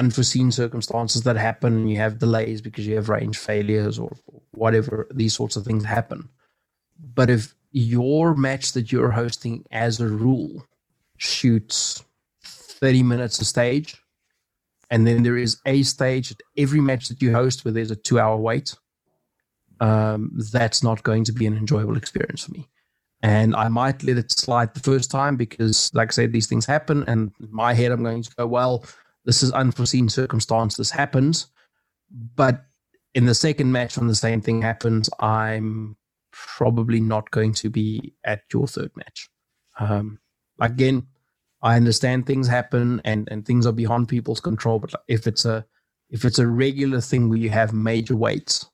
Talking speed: 175 wpm